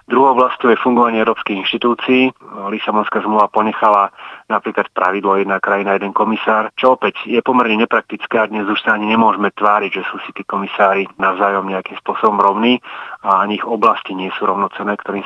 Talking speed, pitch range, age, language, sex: 175 wpm, 100-110 Hz, 30-49, Slovak, male